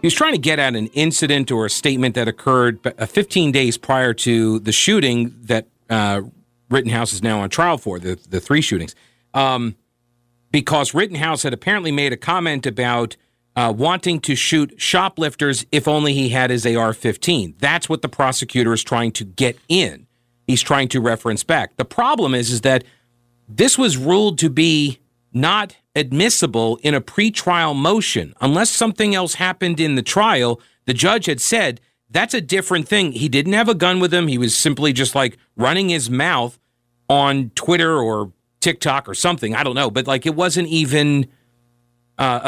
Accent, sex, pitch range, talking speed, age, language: American, male, 120-160 Hz, 175 wpm, 40-59, English